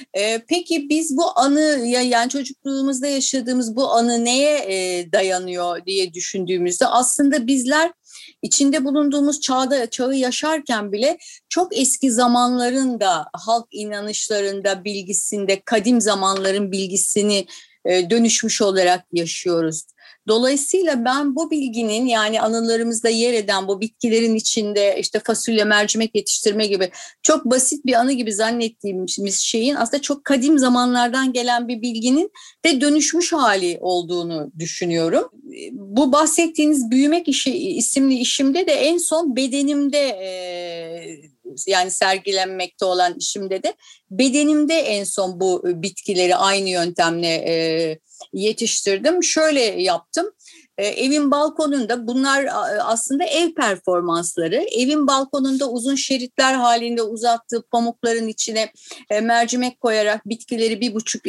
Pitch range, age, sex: 200-280 Hz, 30-49, female